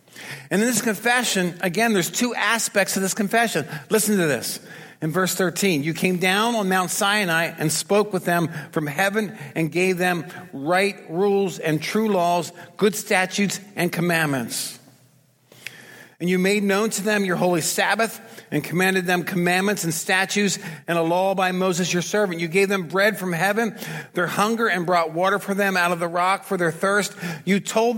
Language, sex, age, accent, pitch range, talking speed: English, male, 50-69, American, 160-200 Hz, 180 wpm